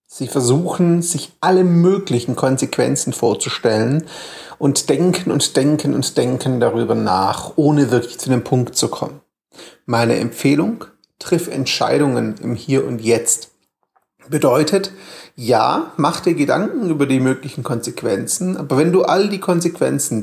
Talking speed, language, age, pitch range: 135 wpm, German, 30-49, 125-160 Hz